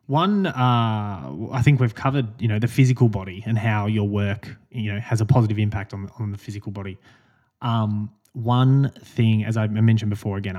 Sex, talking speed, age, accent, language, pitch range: male, 195 wpm, 20-39, Australian, English, 105-125 Hz